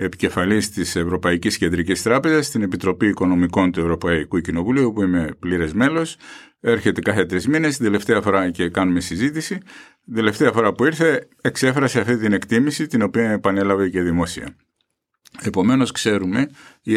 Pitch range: 85-115 Hz